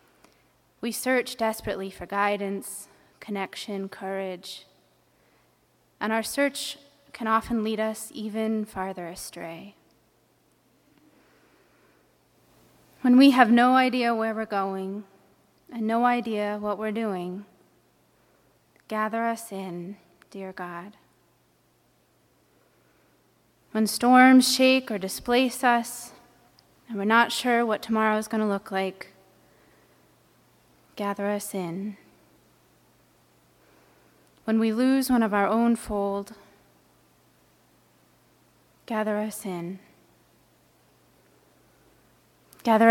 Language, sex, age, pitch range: English, female, 20-39, 195-230 Hz